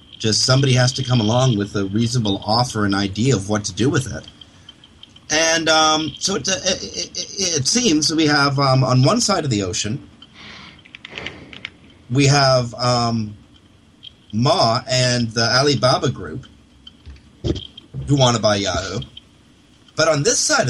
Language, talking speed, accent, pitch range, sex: English, 150 wpm, American, 105-140 Hz, male